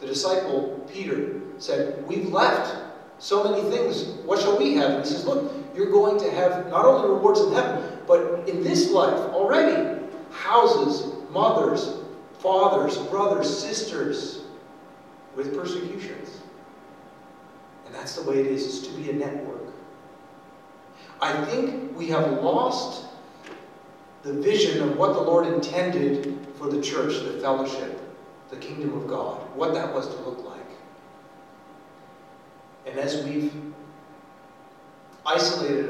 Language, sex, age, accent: English, male, 40-59, American